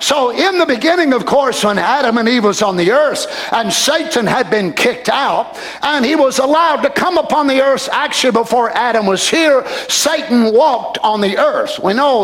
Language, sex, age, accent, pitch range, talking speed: English, male, 50-69, American, 220-280 Hz, 200 wpm